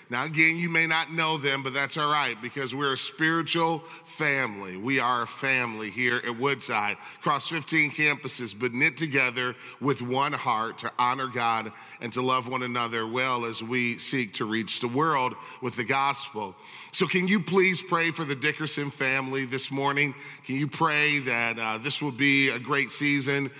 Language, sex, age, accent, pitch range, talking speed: English, male, 40-59, American, 125-155 Hz, 185 wpm